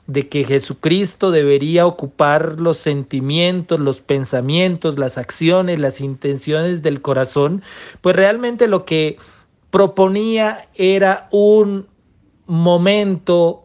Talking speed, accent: 100 wpm, Mexican